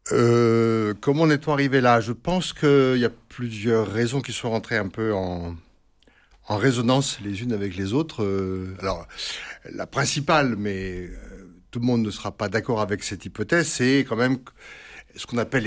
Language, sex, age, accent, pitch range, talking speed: French, male, 60-79, French, 100-125 Hz, 175 wpm